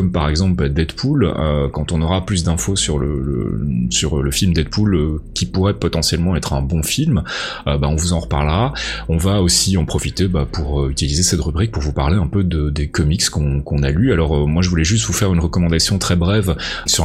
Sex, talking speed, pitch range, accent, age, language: male, 235 wpm, 80-100 Hz, French, 30-49, French